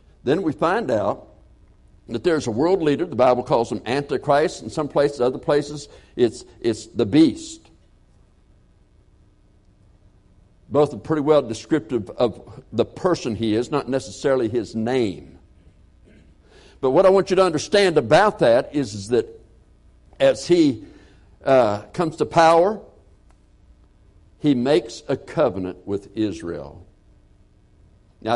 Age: 60-79